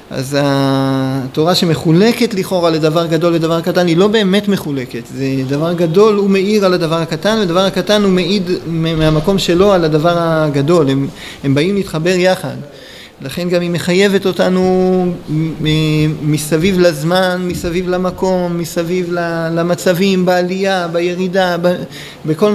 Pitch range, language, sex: 150-185 Hz, Hebrew, male